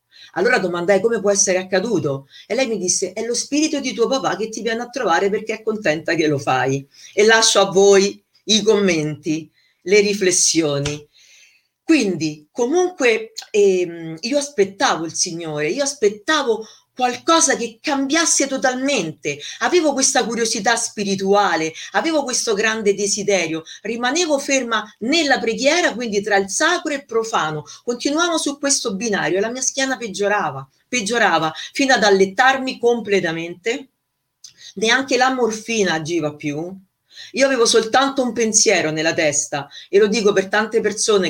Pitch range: 175-240 Hz